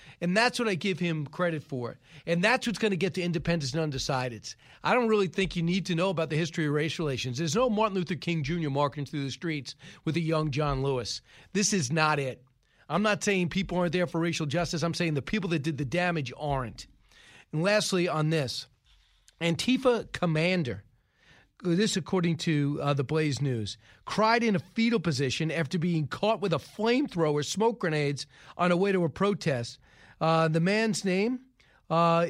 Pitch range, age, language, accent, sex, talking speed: 155-195 Hz, 40-59, English, American, male, 195 wpm